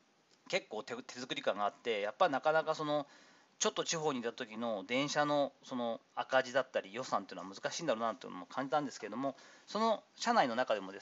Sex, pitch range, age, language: male, 130-195 Hz, 40-59, Japanese